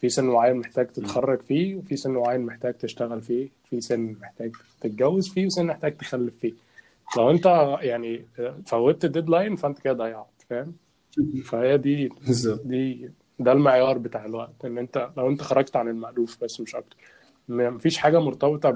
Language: Arabic